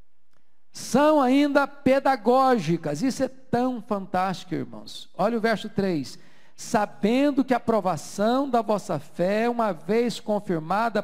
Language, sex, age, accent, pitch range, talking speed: Portuguese, male, 50-69, Brazilian, 195-260 Hz, 120 wpm